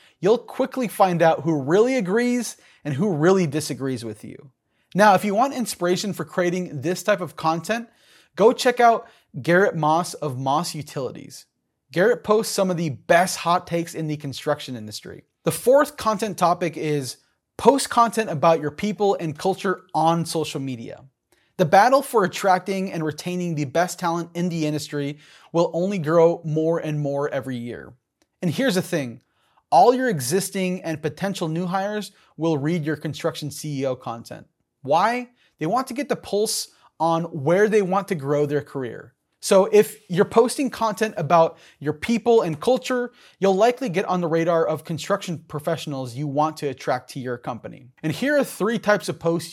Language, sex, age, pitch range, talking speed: English, male, 20-39, 150-205 Hz, 175 wpm